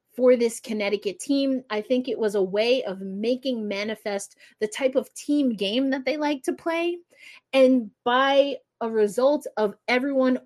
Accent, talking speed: American, 165 wpm